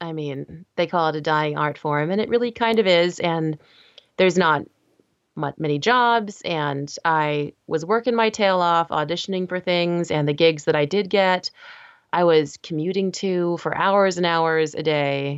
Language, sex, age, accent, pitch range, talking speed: English, female, 30-49, American, 155-195 Hz, 185 wpm